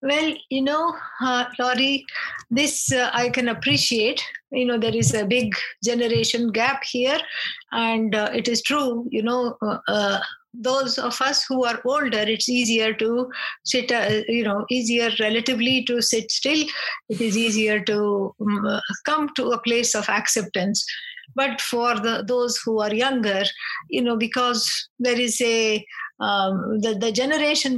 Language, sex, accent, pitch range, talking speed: English, female, Indian, 225-265 Hz, 160 wpm